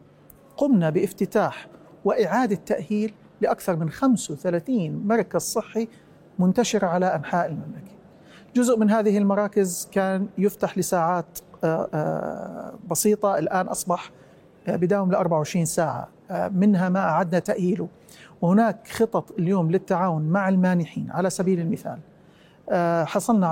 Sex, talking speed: male, 105 wpm